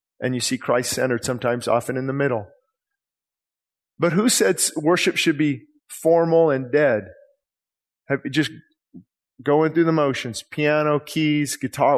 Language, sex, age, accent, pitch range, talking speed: English, male, 40-59, American, 125-165 Hz, 130 wpm